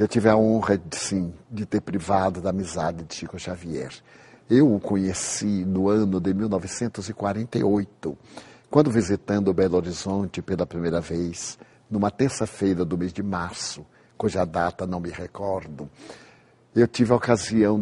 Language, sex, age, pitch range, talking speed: Portuguese, male, 60-79, 90-110 Hz, 140 wpm